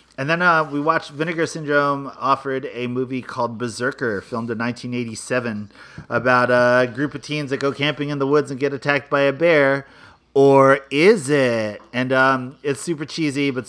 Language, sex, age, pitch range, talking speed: English, male, 30-49, 125-150 Hz, 180 wpm